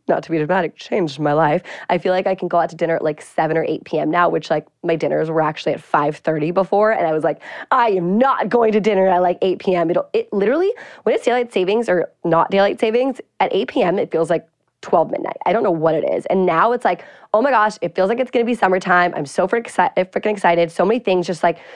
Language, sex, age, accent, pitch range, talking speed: English, female, 20-39, American, 165-225 Hz, 265 wpm